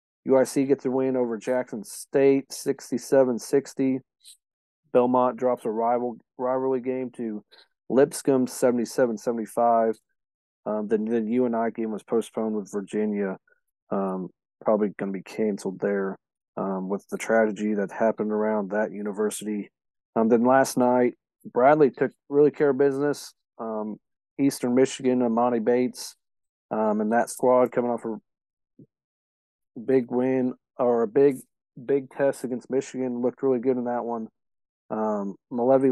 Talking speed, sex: 135 wpm, male